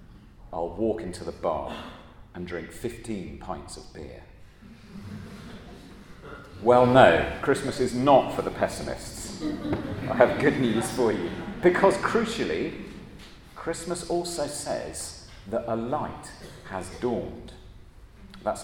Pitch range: 90-125 Hz